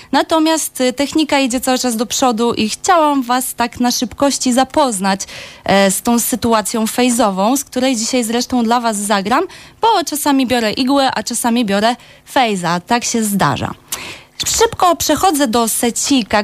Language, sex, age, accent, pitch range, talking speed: Polish, female, 20-39, native, 215-285 Hz, 150 wpm